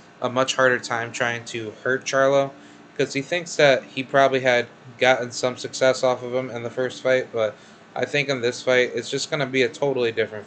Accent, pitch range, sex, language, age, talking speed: American, 110-125 Hz, male, English, 20-39, 225 wpm